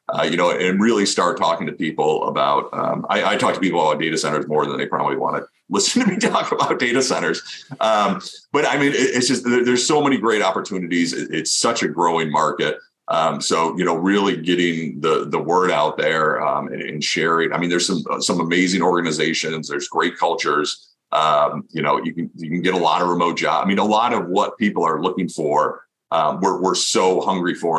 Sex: male